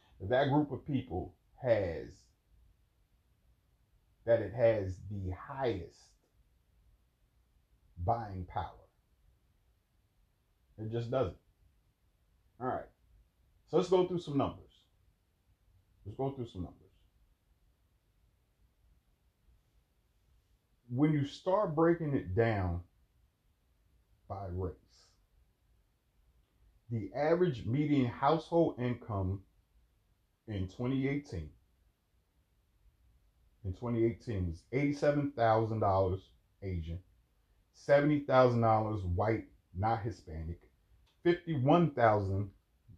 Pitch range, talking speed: 90-120 Hz, 80 wpm